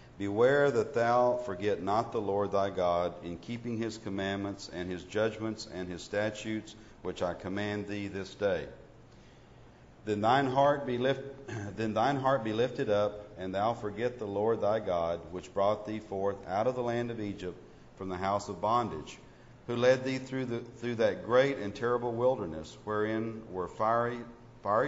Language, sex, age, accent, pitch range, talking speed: English, male, 50-69, American, 100-120 Hz, 160 wpm